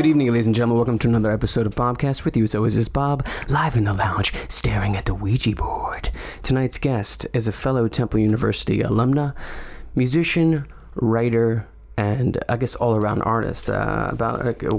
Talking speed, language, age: 180 wpm, English, 20-39